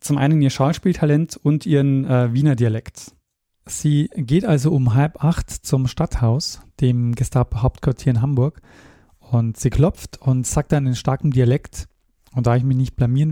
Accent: German